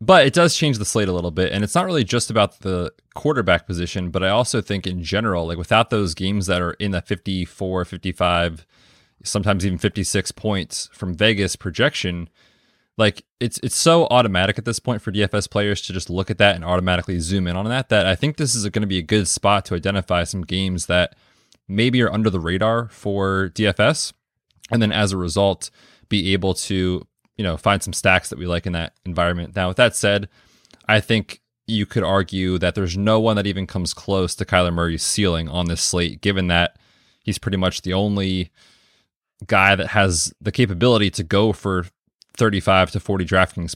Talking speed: 205 wpm